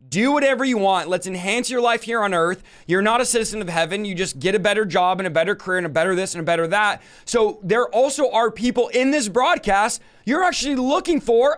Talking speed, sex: 245 wpm, male